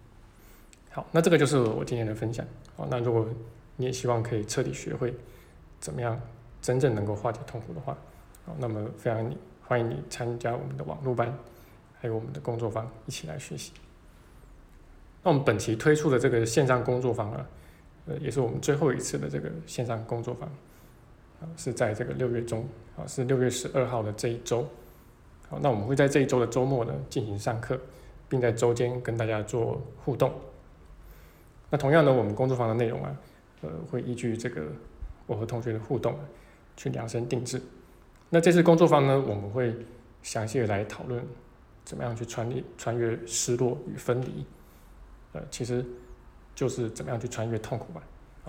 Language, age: Chinese, 20-39